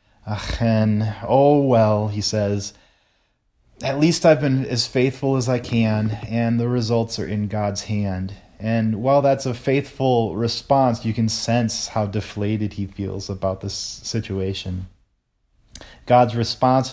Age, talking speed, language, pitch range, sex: 30-49, 140 wpm, English, 105-125 Hz, male